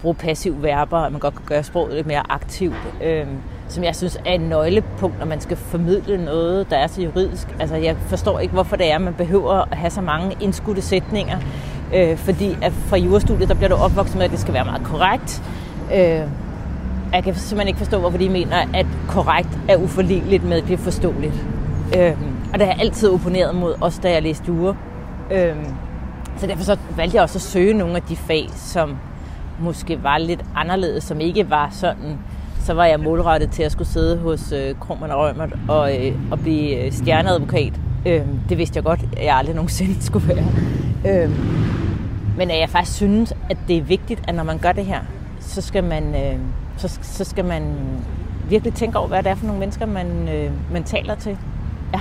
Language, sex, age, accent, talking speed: Danish, female, 30-49, native, 205 wpm